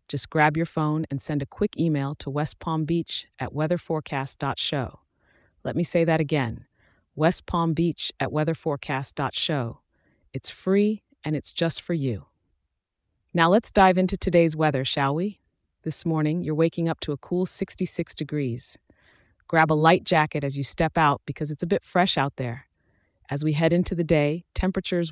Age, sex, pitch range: 30-49, female, 135-165 Hz